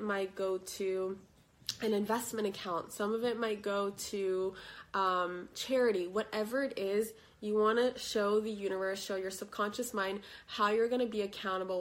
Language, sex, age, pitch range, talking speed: English, female, 20-39, 190-220 Hz, 160 wpm